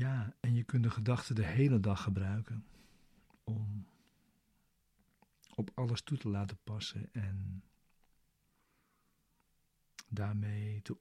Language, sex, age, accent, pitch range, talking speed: Dutch, male, 50-69, Dutch, 100-115 Hz, 110 wpm